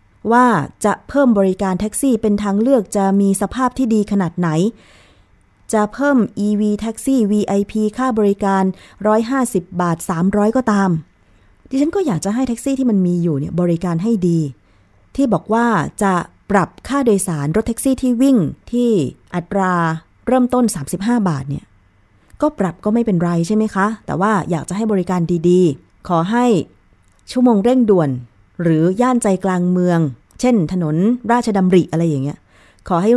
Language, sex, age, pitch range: Thai, female, 20-39, 165-225 Hz